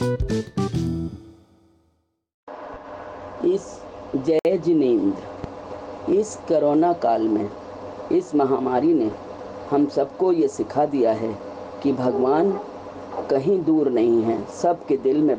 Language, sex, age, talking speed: Hindi, female, 40-59, 100 wpm